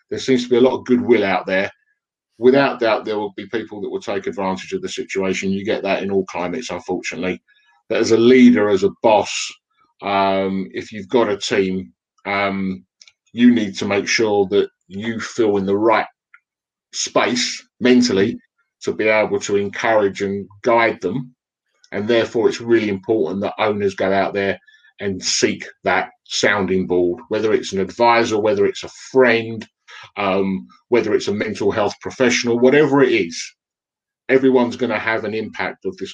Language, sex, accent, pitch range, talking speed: English, male, British, 100-130 Hz, 175 wpm